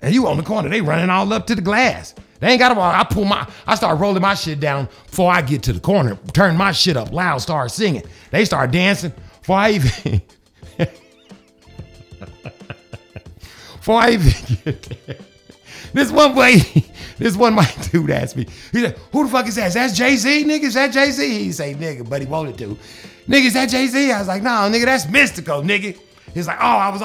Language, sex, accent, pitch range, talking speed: English, male, American, 155-230 Hz, 210 wpm